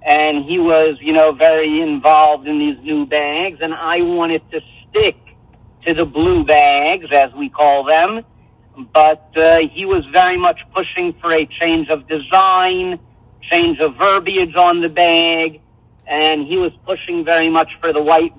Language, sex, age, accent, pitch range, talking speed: English, male, 50-69, American, 150-195 Hz, 165 wpm